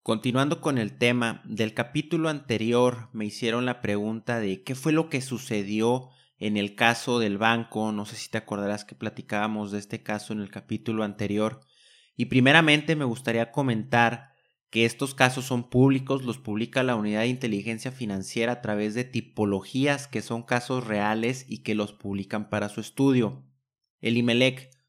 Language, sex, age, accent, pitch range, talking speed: Spanish, male, 30-49, Mexican, 110-130 Hz, 165 wpm